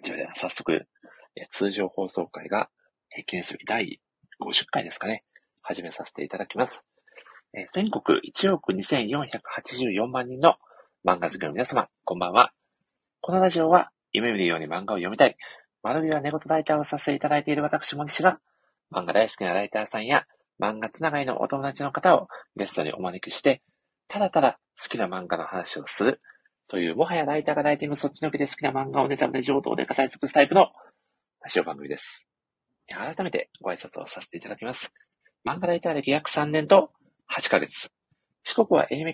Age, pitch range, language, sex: 40-59, 140-185 Hz, Japanese, male